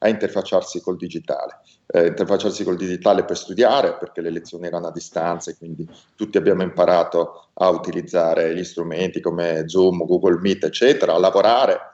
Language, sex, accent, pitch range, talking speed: Italian, male, native, 95-120 Hz, 160 wpm